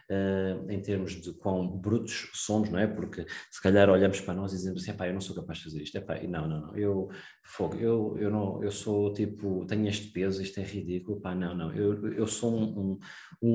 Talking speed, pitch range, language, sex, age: 230 wpm, 95-115 Hz, Portuguese, male, 20-39